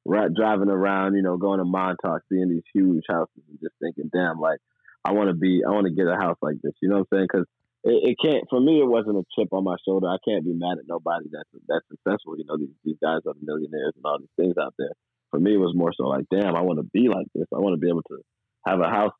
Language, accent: English, American